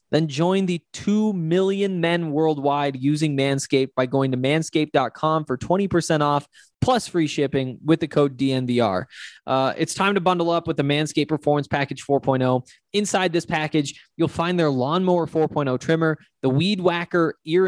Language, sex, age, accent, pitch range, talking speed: English, male, 20-39, American, 140-170 Hz, 165 wpm